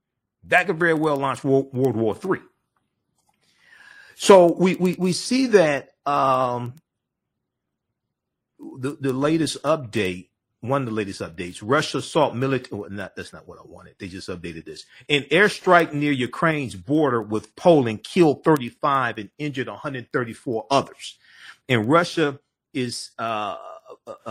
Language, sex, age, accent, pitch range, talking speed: English, male, 40-59, American, 115-150 Hz, 150 wpm